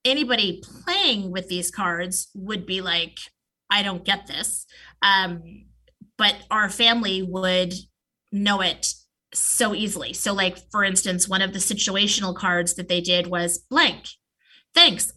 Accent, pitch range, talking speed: American, 180-215 Hz, 140 wpm